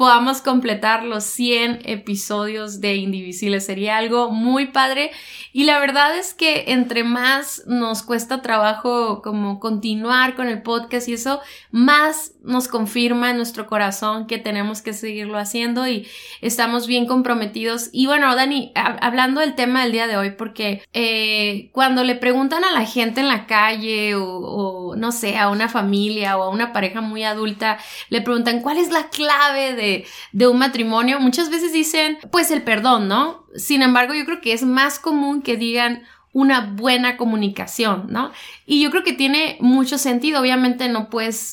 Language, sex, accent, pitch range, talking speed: Spanish, female, Mexican, 220-265 Hz, 170 wpm